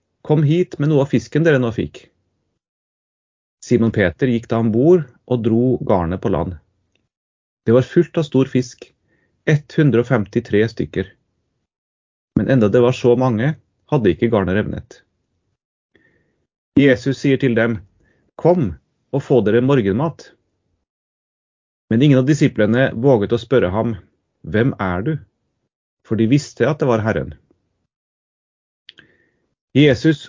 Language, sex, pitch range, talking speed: English, male, 105-135 Hz, 130 wpm